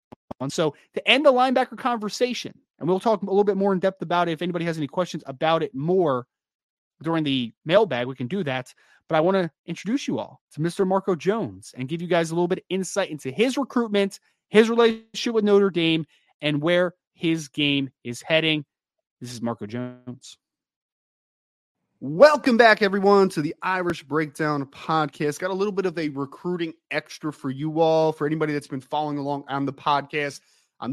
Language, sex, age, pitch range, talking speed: English, male, 30-49, 140-180 Hz, 195 wpm